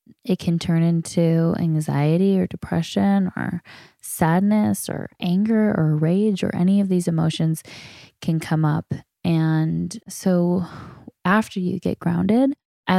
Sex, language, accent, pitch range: female, English, American, 165-195 Hz